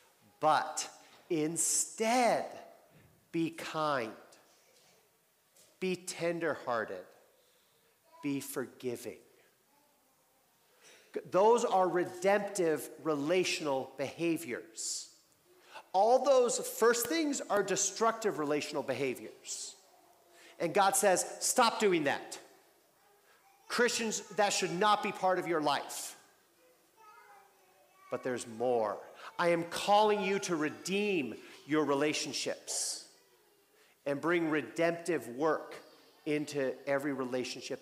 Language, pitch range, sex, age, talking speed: English, 150-210 Hz, male, 40-59, 85 wpm